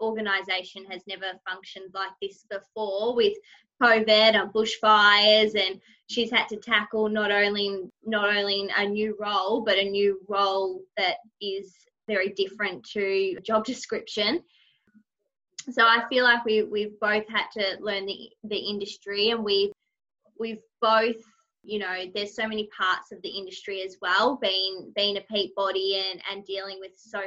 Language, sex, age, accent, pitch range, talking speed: English, female, 20-39, Australian, 190-215 Hz, 160 wpm